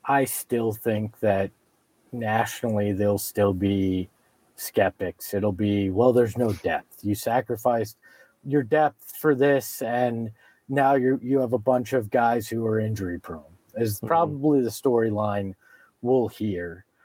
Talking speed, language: 135 wpm, English